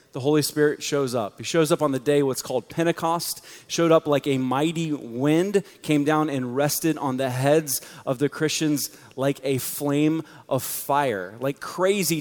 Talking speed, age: 180 wpm, 30-49